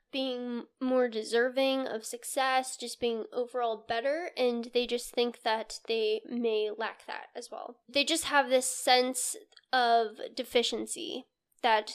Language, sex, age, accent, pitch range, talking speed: English, female, 10-29, American, 235-270 Hz, 140 wpm